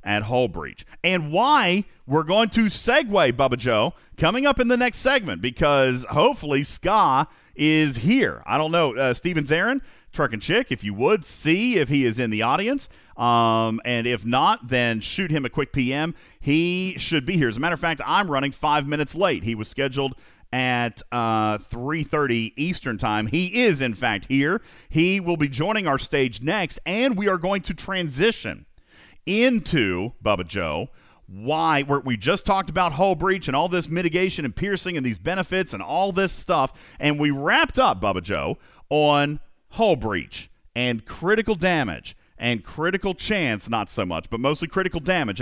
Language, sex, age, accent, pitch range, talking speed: English, male, 40-59, American, 125-185 Hz, 180 wpm